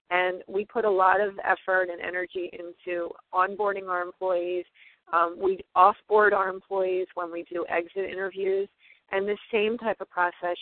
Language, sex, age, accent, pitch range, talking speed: English, female, 40-59, American, 170-190 Hz, 165 wpm